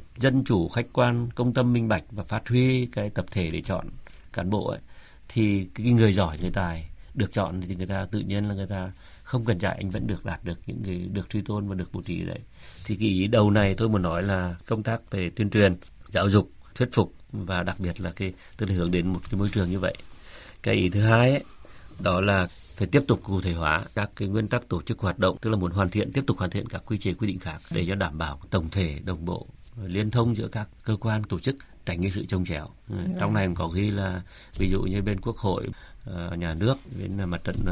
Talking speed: 255 wpm